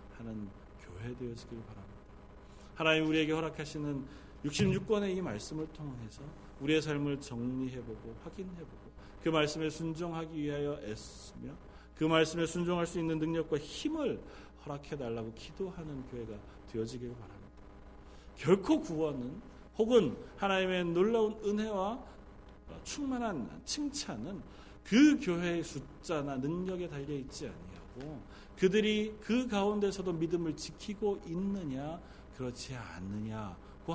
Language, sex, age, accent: Korean, male, 40-59, native